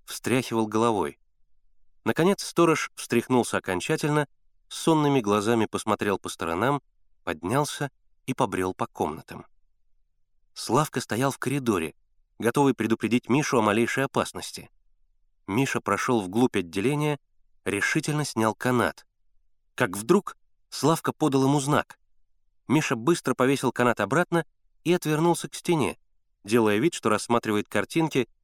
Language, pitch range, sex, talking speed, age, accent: Russian, 100-140 Hz, male, 110 wpm, 30-49, native